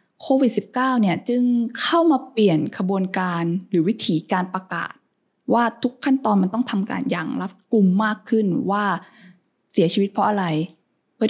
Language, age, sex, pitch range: Thai, 20-39, female, 180-235 Hz